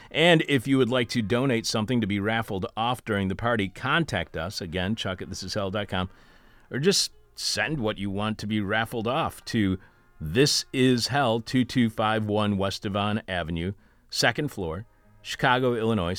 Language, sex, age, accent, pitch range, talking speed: English, male, 40-59, American, 95-120 Hz, 160 wpm